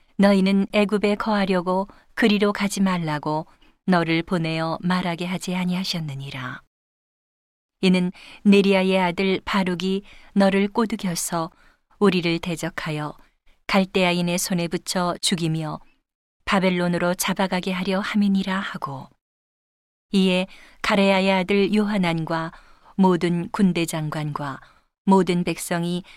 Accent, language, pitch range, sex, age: native, Korean, 175-200 Hz, female, 40-59